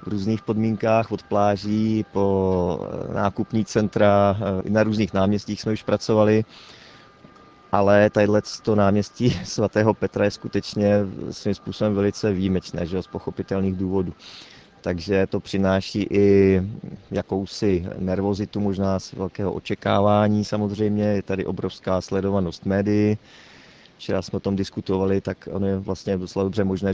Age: 30-49